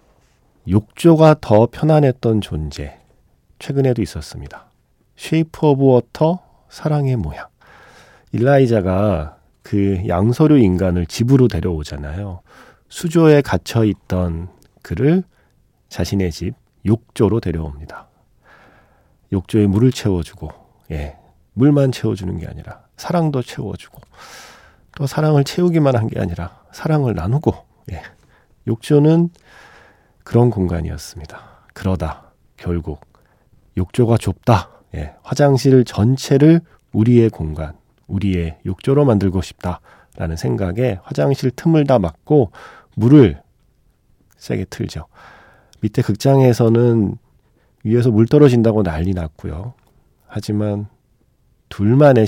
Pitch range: 90-130 Hz